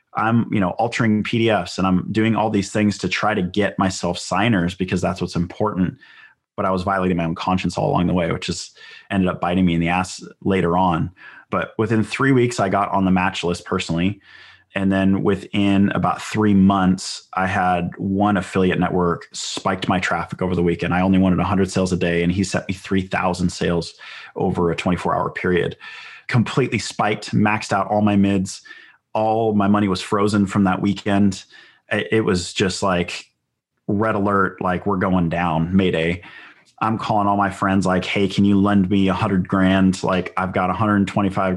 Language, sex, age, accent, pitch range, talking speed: English, male, 30-49, American, 90-105 Hz, 190 wpm